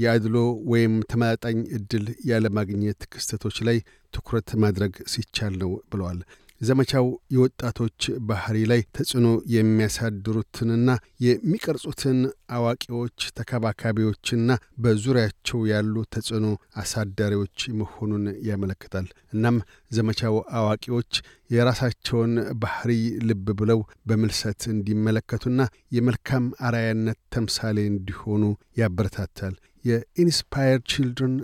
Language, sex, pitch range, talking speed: Amharic, male, 110-125 Hz, 85 wpm